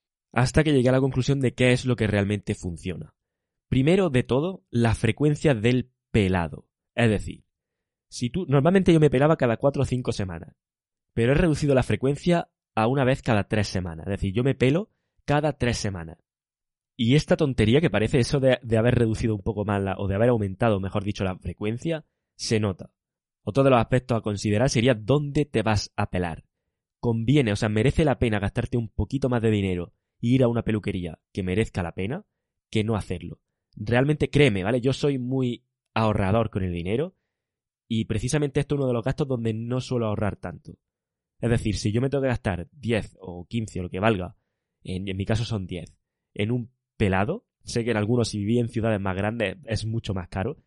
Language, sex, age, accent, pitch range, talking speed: Spanish, male, 20-39, Spanish, 105-135 Hz, 205 wpm